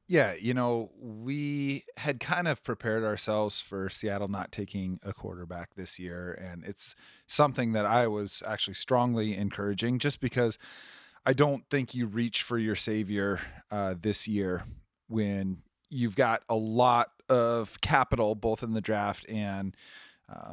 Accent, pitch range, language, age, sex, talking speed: American, 100-130 Hz, English, 30-49, male, 150 wpm